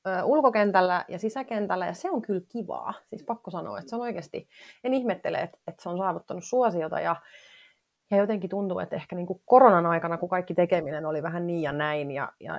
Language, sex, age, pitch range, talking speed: Finnish, female, 30-49, 165-220 Hz, 190 wpm